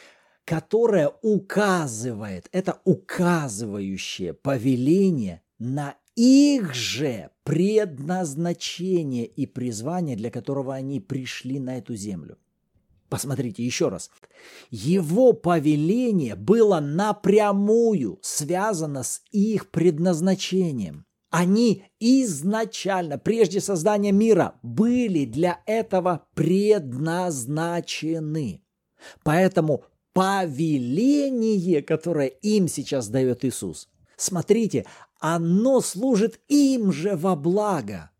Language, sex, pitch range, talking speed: Russian, male, 145-210 Hz, 80 wpm